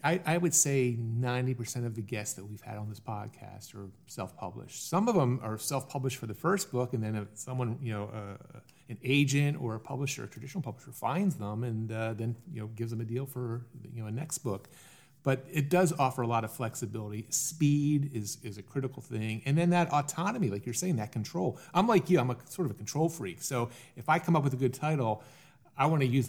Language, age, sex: English, 40-59, male